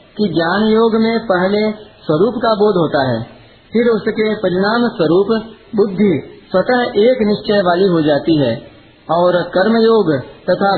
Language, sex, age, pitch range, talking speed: Hindi, male, 50-69, 160-215 Hz, 145 wpm